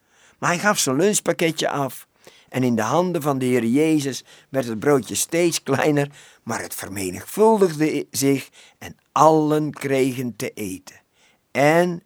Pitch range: 115-160 Hz